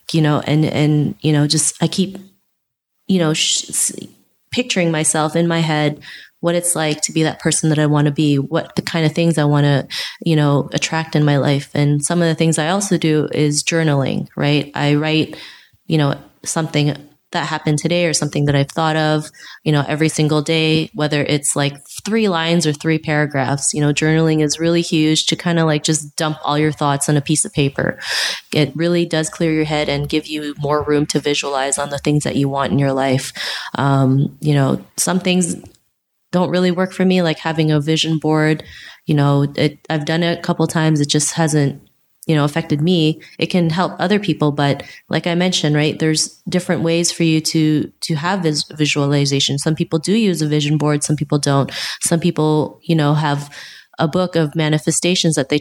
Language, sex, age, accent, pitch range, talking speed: English, female, 20-39, American, 145-165 Hz, 210 wpm